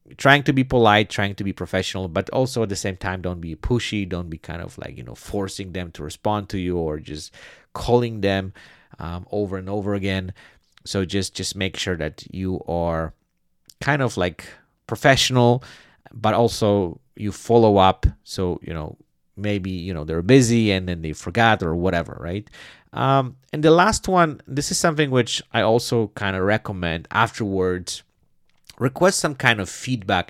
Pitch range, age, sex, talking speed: 90-120 Hz, 30-49, male, 180 wpm